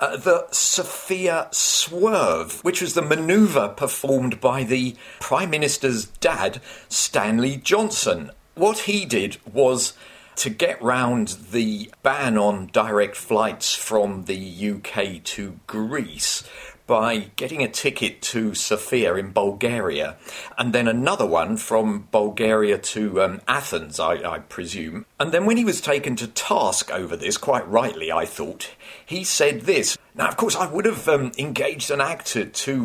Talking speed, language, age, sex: 150 wpm, English, 40-59, male